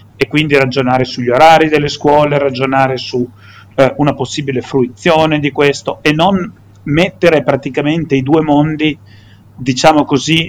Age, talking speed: 40-59, 135 wpm